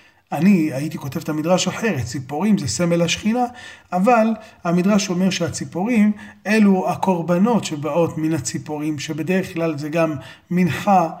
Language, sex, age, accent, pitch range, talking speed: Hebrew, male, 30-49, native, 145-185 Hz, 130 wpm